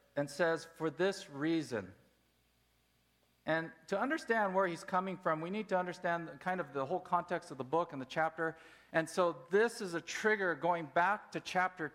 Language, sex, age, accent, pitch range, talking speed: English, male, 50-69, American, 125-185 Hz, 185 wpm